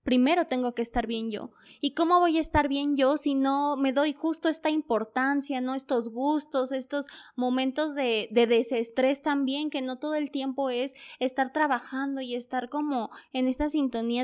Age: 20-39